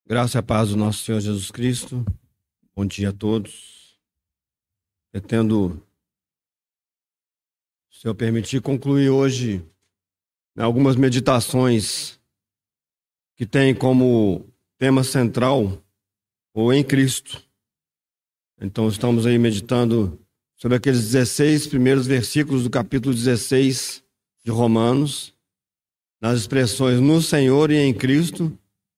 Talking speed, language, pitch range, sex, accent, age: 105 wpm, Portuguese, 105-125 Hz, male, Brazilian, 50-69